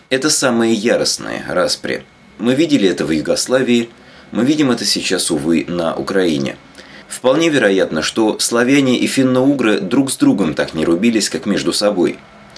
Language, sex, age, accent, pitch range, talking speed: Russian, male, 30-49, native, 95-140 Hz, 150 wpm